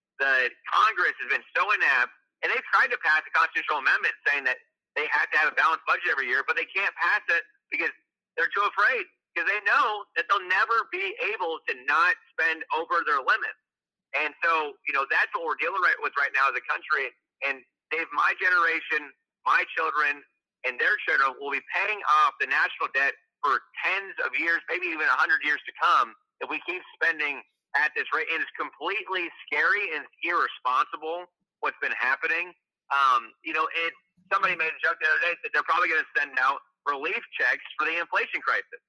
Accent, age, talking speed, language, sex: American, 30-49, 200 wpm, English, male